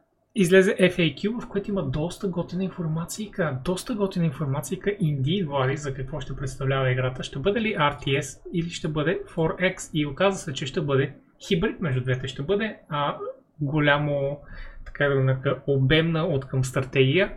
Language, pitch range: Bulgarian, 130-175 Hz